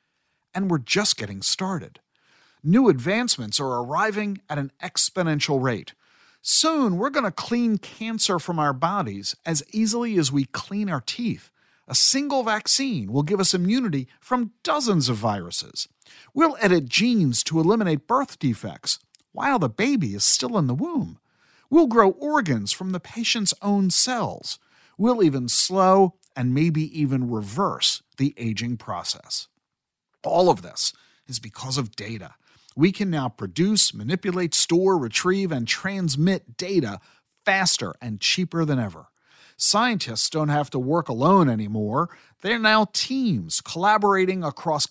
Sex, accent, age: male, American, 50-69